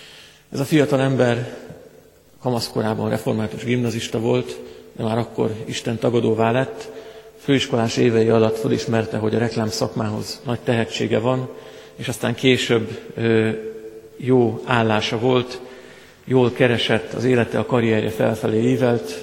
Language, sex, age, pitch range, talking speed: Hungarian, male, 50-69, 110-125 Hz, 120 wpm